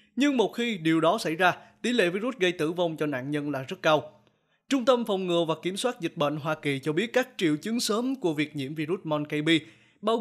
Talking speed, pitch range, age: 245 wpm, 160-225 Hz, 20-39